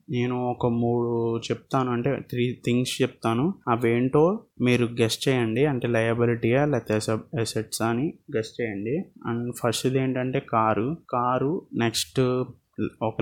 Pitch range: 115-130 Hz